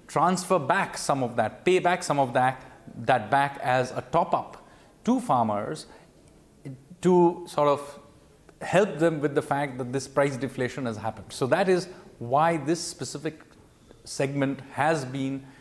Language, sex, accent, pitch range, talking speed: English, male, Indian, 130-170 Hz, 155 wpm